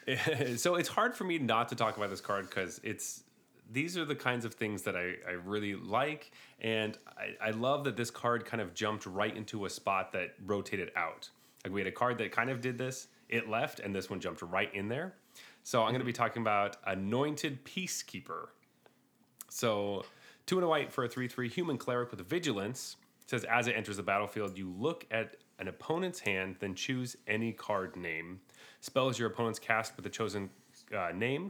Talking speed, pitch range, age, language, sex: 210 wpm, 100-125 Hz, 30-49, English, male